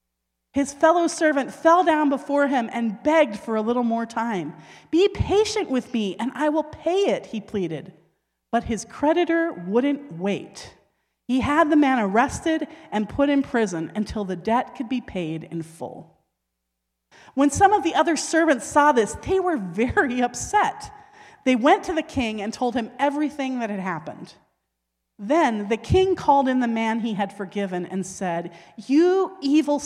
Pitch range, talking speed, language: 190-295 Hz, 170 wpm, English